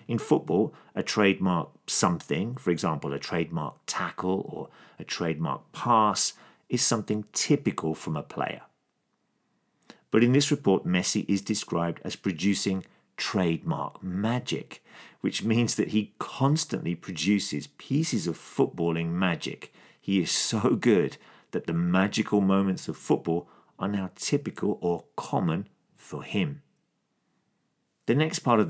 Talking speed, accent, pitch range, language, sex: 130 wpm, British, 85-110 Hz, English, male